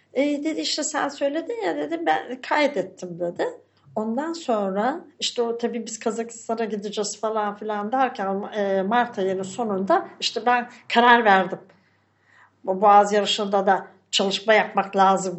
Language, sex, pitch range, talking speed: Turkish, female, 200-315 Hz, 135 wpm